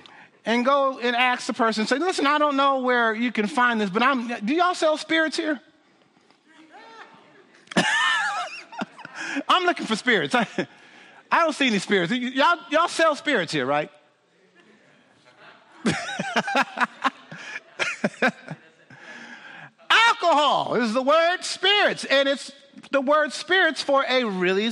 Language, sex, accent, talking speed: English, male, American, 125 wpm